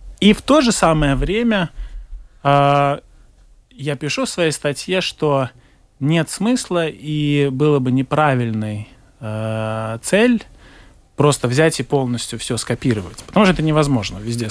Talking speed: 130 wpm